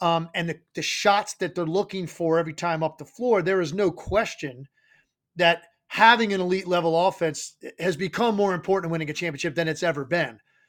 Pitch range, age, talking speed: 165-200 Hz, 30-49, 200 wpm